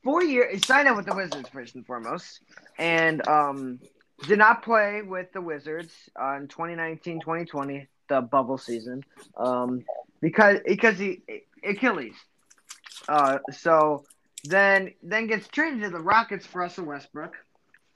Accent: American